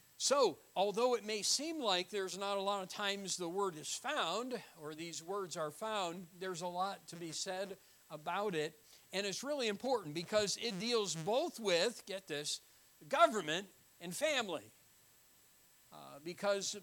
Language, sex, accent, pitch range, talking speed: English, male, American, 155-200 Hz, 160 wpm